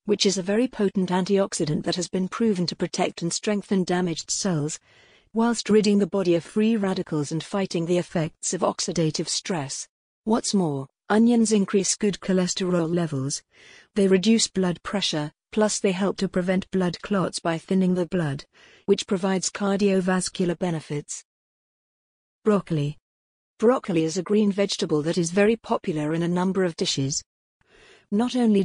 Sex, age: female, 50-69